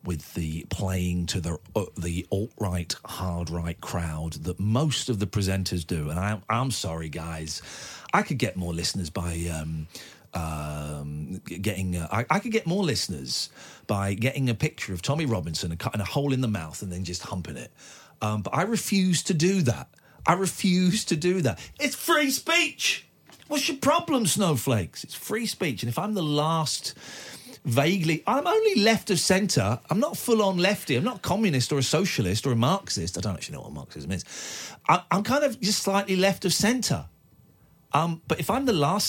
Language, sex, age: English, male, 40-59